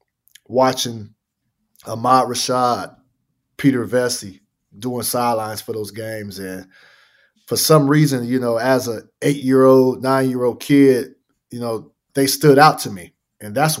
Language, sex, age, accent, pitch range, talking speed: English, male, 30-49, American, 115-140 Hz, 130 wpm